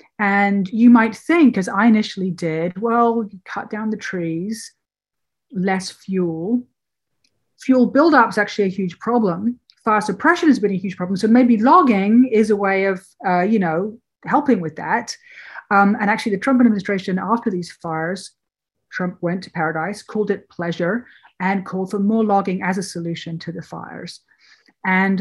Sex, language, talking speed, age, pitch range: female, English, 165 wpm, 40-59, 175-225 Hz